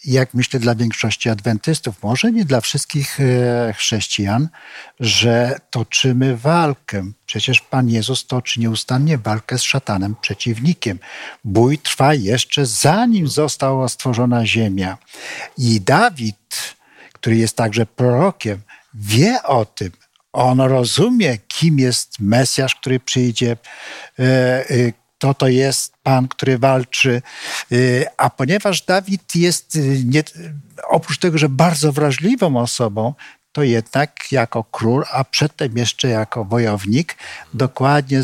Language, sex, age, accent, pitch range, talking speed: Polish, male, 50-69, native, 115-150 Hz, 115 wpm